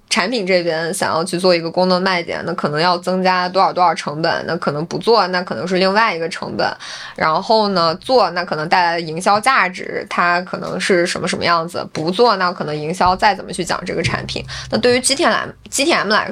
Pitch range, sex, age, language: 170-215 Hz, female, 20-39, Chinese